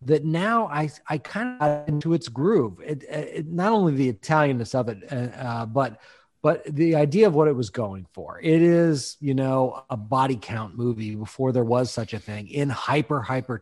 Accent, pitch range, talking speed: American, 120-155 Hz, 205 wpm